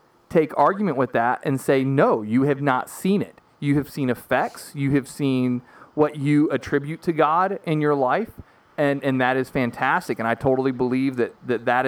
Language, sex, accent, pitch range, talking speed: English, male, American, 125-165 Hz, 195 wpm